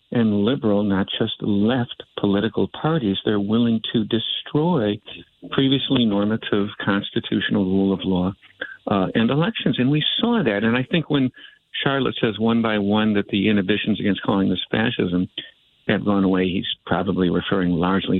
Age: 50-69